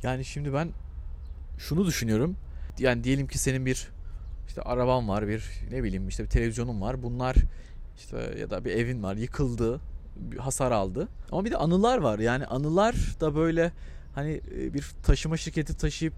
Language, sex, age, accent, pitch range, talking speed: Turkish, male, 30-49, native, 115-155 Hz, 165 wpm